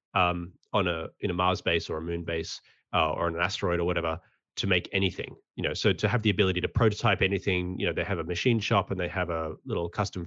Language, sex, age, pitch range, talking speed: English, male, 30-49, 90-110 Hz, 250 wpm